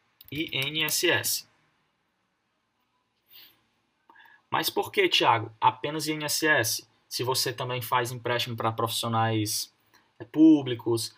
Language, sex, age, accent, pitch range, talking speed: Portuguese, male, 20-39, Brazilian, 115-155 Hz, 80 wpm